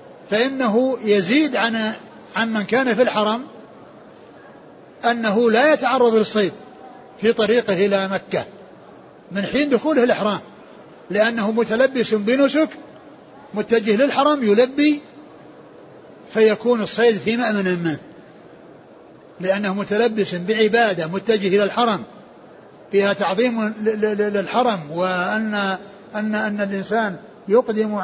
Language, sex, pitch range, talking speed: Arabic, male, 210-245 Hz, 90 wpm